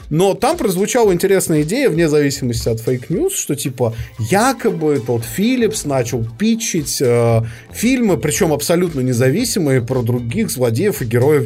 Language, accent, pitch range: Russian, native, 125-195 Hz